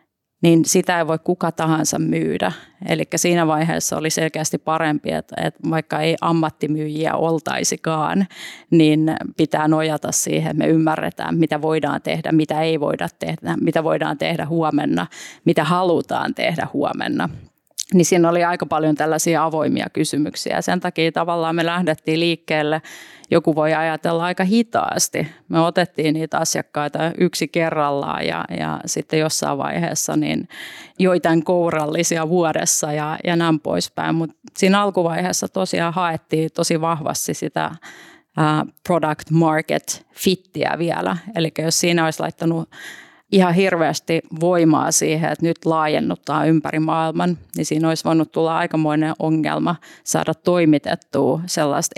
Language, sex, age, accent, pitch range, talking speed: Finnish, female, 30-49, native, 155-170 Hz, 135 wpm